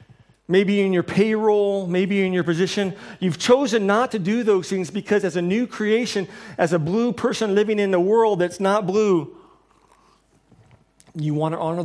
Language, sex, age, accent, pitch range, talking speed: English, male, 40-59, American, 170-215 Hz, 175 wpm